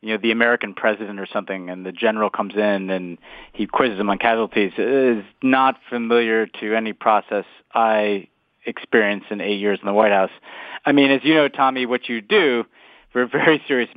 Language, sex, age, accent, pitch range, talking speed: English, male, 30-49, American, 110-130 Hz, 200 wpm